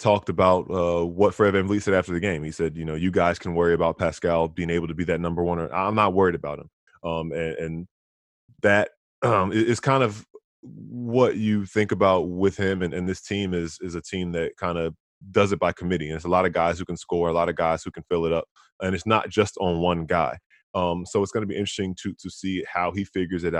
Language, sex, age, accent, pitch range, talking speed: English, male, 20-39, American, 85-95 Hz, 250 wpm